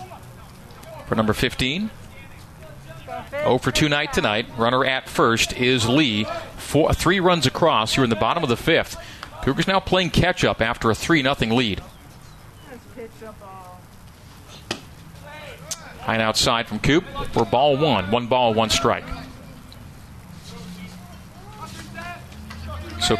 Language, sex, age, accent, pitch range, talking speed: English, male, 40-59, American, 110-140 Hz, 115 wpm